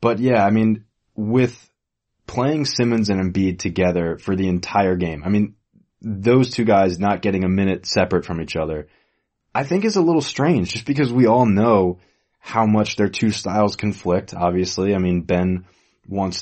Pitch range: 90-105 Hz